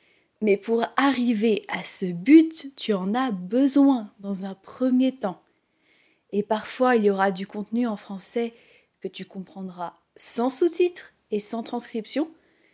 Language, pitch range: French, 200-255 Hz